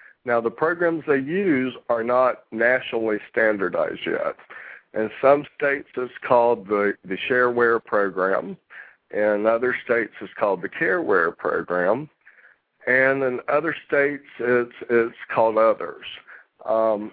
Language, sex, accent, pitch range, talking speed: English, male, American, 115-140 Hz, 125 wpm